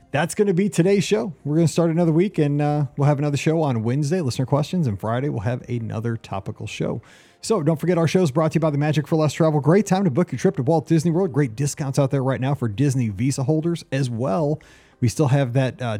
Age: 30-49